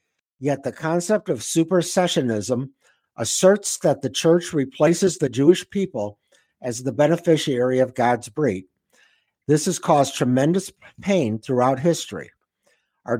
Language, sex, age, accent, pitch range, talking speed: English, male, 60-79, American, 125-165 Hz, 125 wpm